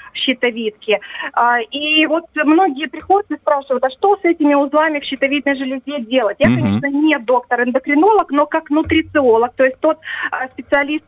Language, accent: Russian, native